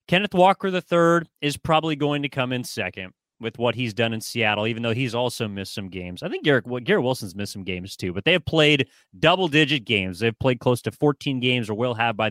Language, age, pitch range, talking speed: English, 30-49, 115-165 Hz, 235 wpm